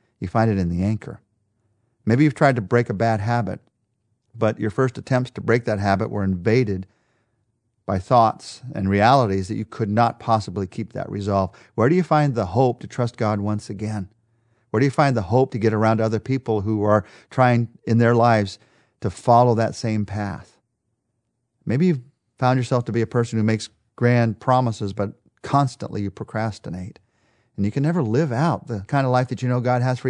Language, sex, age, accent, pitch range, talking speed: English, male, 40-59, American, 105-130 Hz, 200 wpm